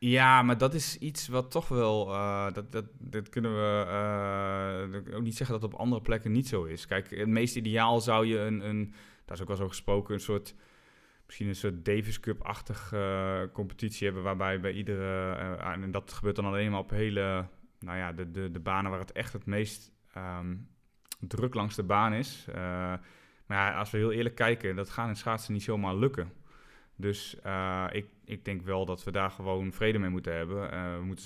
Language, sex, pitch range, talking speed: Dutch, male, 95-110 Hz, 215 wpm